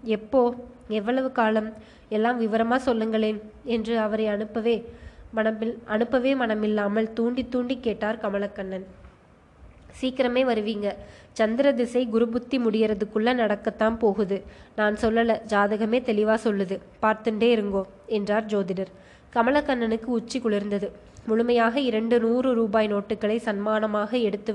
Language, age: Tamil, 20-39